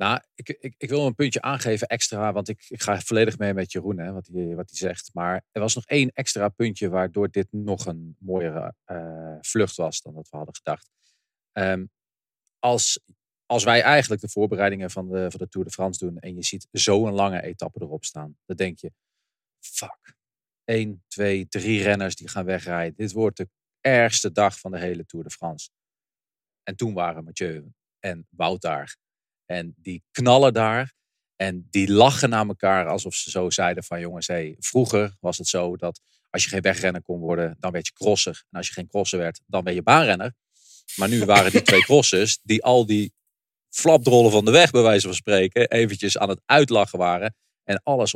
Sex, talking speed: male, 200 wpm